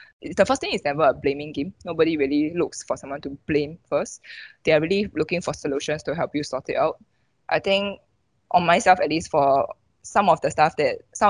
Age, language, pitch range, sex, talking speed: 20-39, English, 145-185 Hz, female, 220 wpm